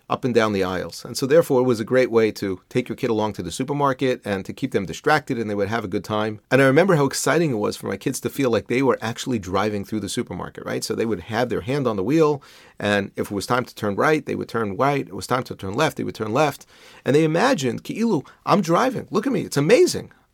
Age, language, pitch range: 40-59, English, 105-140 Hz